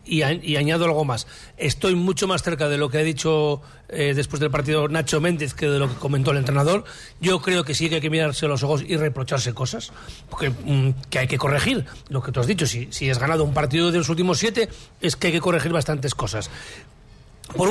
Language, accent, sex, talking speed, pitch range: Spanish, Spanish, male, 230 wpm, 150-180 Hz